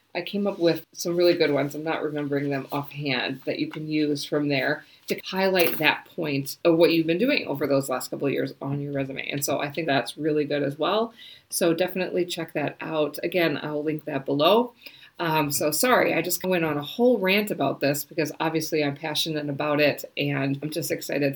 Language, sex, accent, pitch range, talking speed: English, female, American, 145-175 Hz, 220 wpm